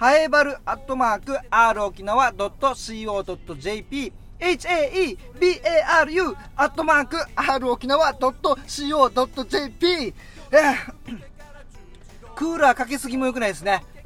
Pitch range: 200-275 Hz